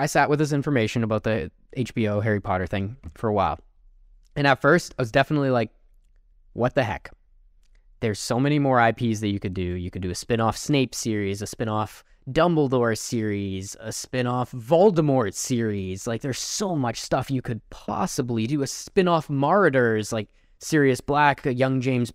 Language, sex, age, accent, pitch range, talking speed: English, male, 10-29, American, 100-140 Hz, 190 wpm